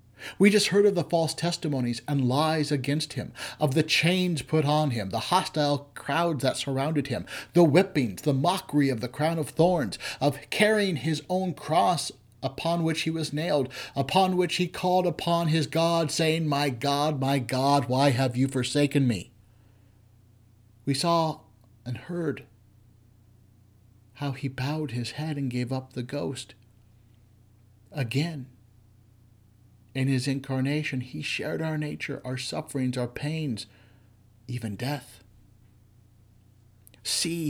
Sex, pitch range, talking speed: male, 115-155 Hz, 140 wpm